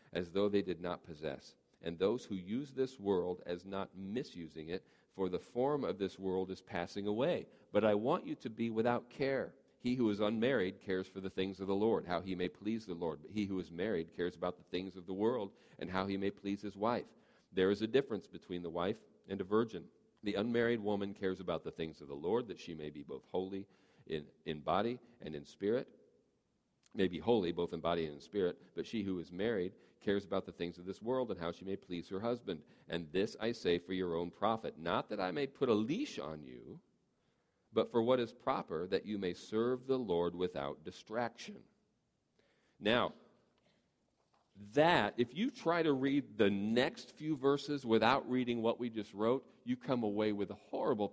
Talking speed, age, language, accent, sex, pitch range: 215 wpm, 40-59, English, American, male, 90-115 Hz